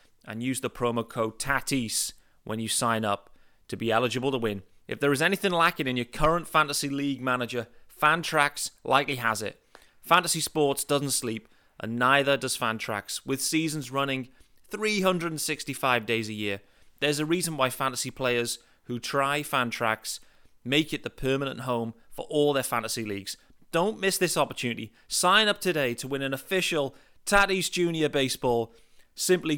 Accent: British